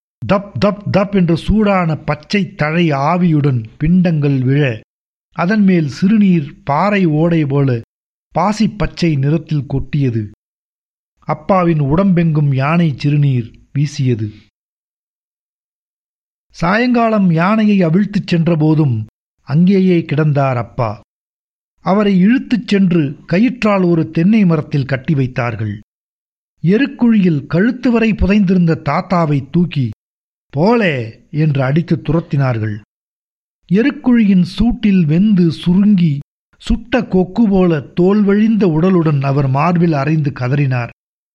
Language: Tamil